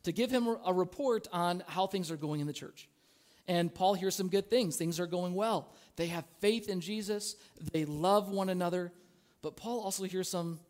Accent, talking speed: American, 210 wpm